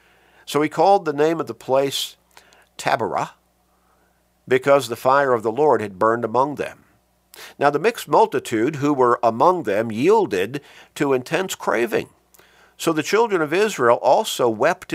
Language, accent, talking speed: English, American, 155 wpm